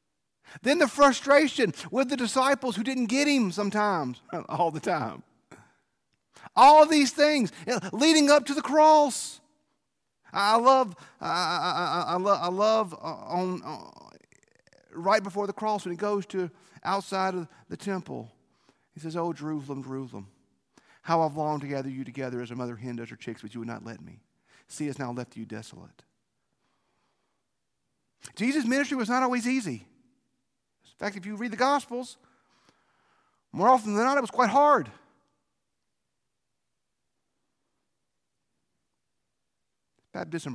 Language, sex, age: English, male, 40-59